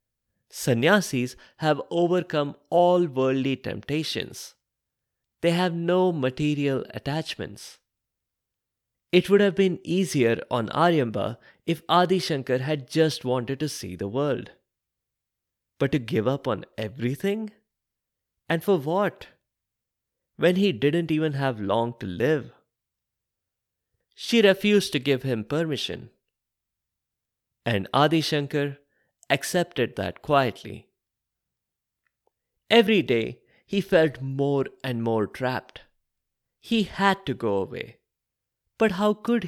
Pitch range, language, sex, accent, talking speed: 120-180 Hz, English, male, Indian, 110 wpm